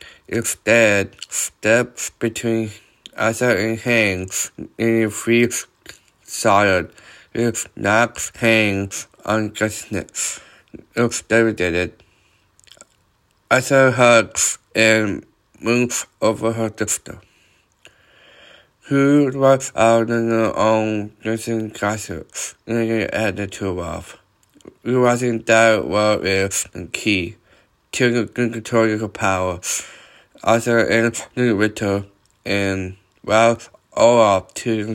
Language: English